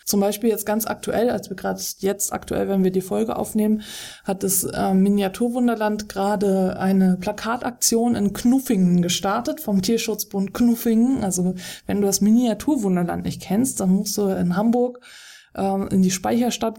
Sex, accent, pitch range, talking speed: female, German, 190-230 Hz, 155 wpm